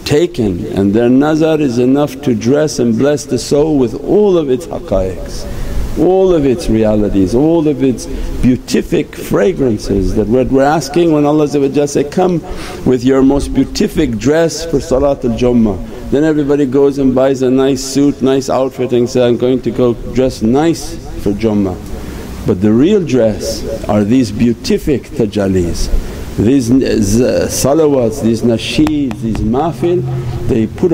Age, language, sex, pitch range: 50-69, English, male, 110-145 Hz